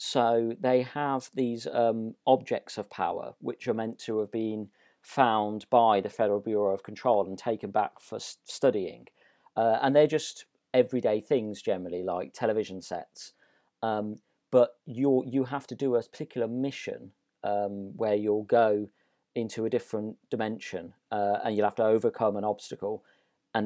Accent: British